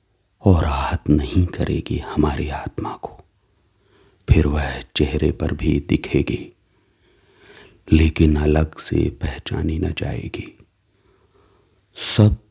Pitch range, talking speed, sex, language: 80-100 Hz, 95 wpm, male, Hindi